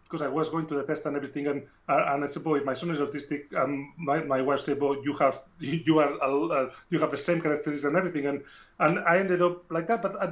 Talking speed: 280 wpm